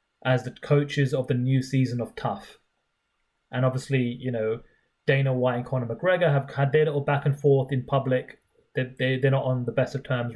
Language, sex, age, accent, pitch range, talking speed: English, male, 30-49, British, 125-150 Hz, 205 wpm